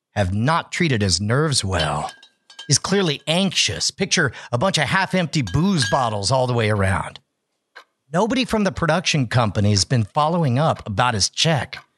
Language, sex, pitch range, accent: English, male, 120-180 Hz, American